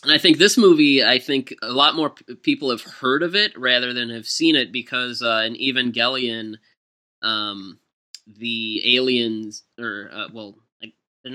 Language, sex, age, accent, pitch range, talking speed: English, male, 20-39, American, 110-140 Hz, 165 wpm